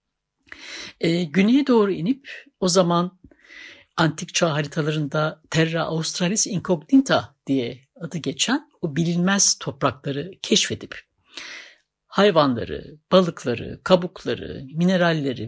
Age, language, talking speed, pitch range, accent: 60-79, Turkish, 90 wpm, 155-235 Hz, native